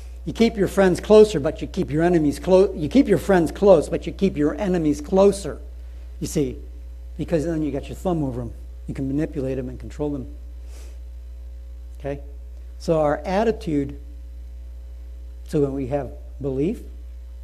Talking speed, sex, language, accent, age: 165 wpm, male, English, American, 60-79